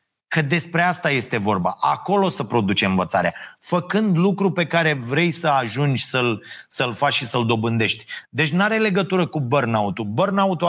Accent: native